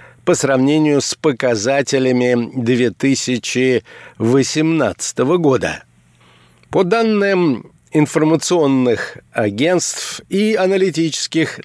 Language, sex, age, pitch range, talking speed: Russian, male, 60-79, 120-160 Hz, 60 wpm